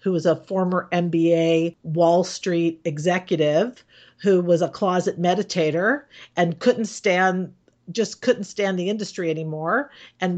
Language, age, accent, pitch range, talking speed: English, 50-69, American, 160-190 Hz, 135 wpm